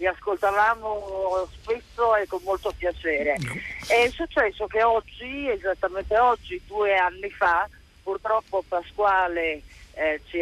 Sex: male